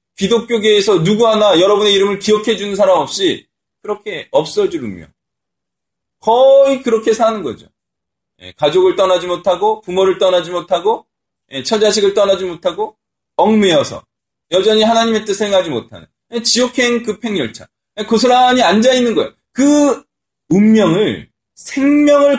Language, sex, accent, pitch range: Korean, male, native, 190-260 Hz